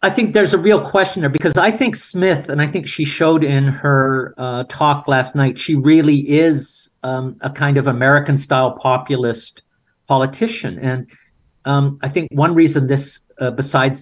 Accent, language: American, English